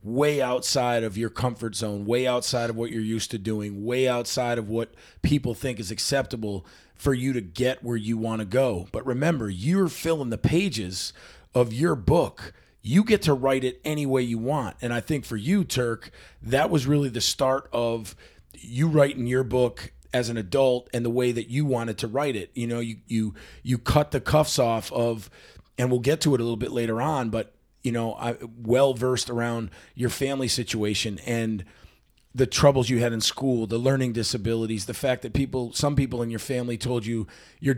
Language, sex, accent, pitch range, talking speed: English, male, American, 115-135 Hz, 200 wpm